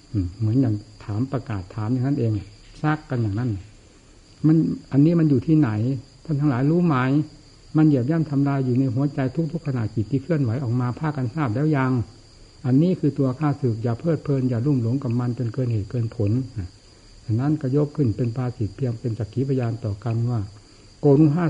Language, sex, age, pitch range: Thai, male, 60-79, 110-145 Hz